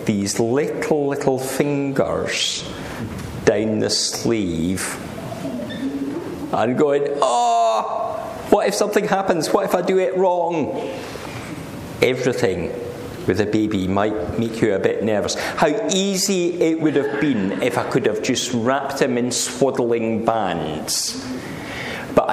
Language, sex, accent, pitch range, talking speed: English, male, British, 115-145 Hz, 125 wpm